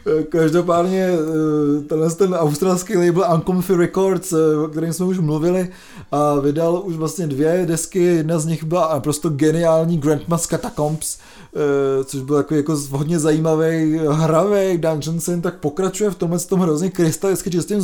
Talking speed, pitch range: 140 wpm, 150-175 Hz